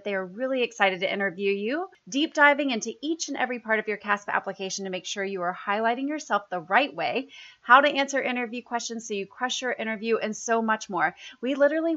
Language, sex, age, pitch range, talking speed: English, female, 30-49, 195-245 Hz, 220 wpm